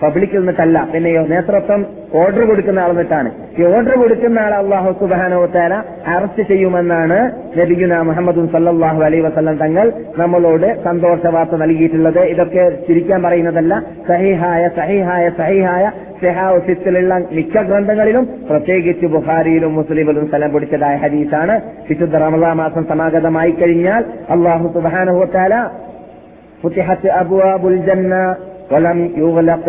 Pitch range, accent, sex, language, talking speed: 170-190 Hz, native, male, Malayalam, 105 wpm